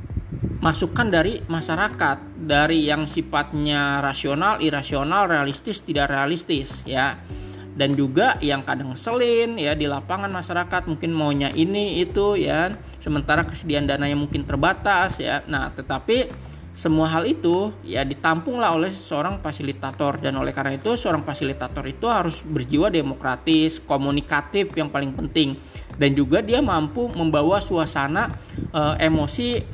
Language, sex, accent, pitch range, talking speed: Indonesian, male, native, 140-165 Hz, 130 wpm